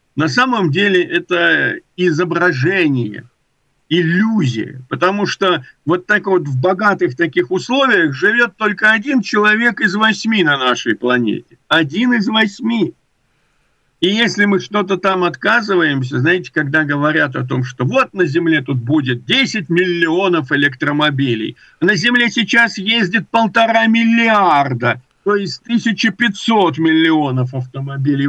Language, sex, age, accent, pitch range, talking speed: Russian, male, 50-69, native, 155-215 Hz, 125 wpm